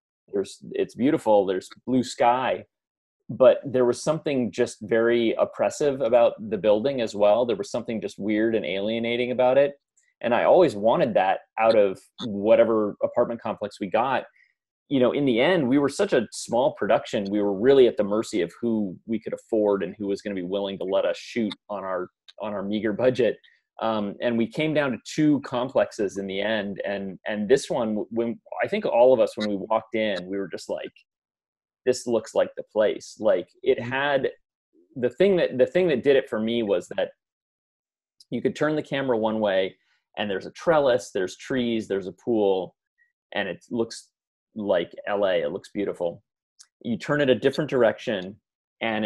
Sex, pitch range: male, 105-135 Hz